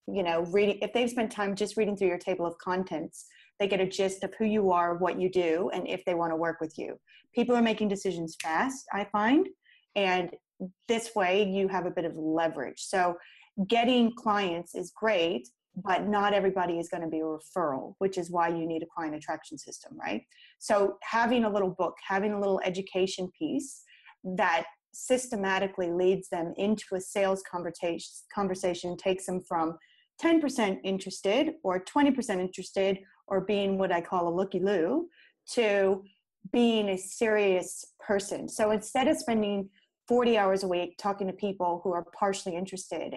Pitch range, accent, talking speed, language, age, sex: 175-210 Hz, American, 175 wpm, English, 30-49, female